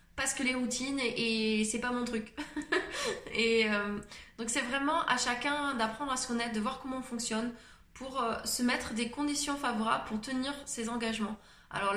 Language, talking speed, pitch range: French, 190 wpm, 210-245 Hz